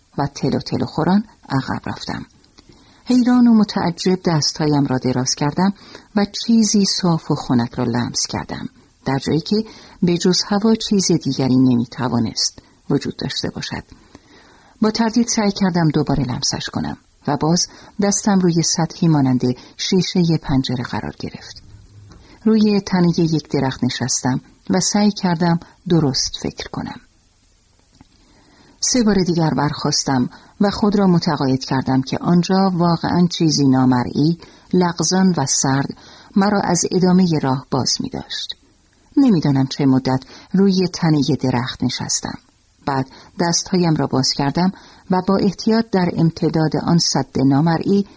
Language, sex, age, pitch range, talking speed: Persian, female, 50-69, 135-195 Hz, 130 wpm